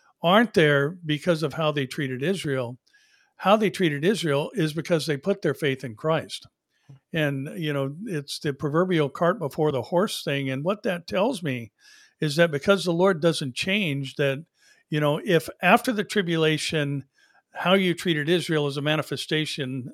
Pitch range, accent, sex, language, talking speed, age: 140-185 Hz, American, male, English, 170 wpm, 60-79